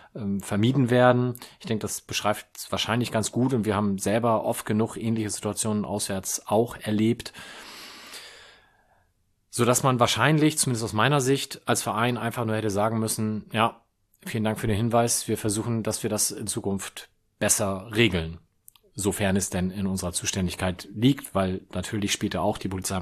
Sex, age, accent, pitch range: male, 30-49, German, 105-130 Hz